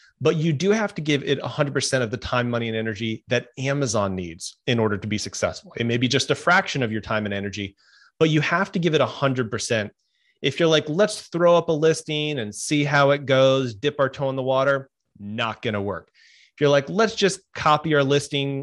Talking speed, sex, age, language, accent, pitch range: 230 wpm, male, 30-49, English, American, 115-145 Hz